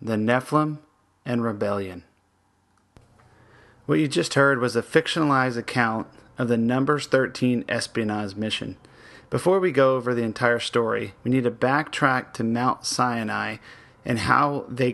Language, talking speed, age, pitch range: English, 140 wpm, 30-49, 115-135 Hz